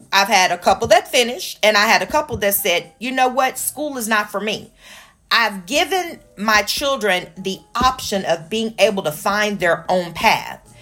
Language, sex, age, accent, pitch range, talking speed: English, female, 40-59, American, 190-245 Hz, 195 wpm